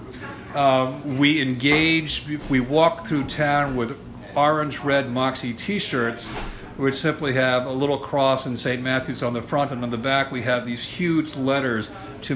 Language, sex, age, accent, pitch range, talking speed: English, male, 50-69, American, 120-140 Hz, 160 wpm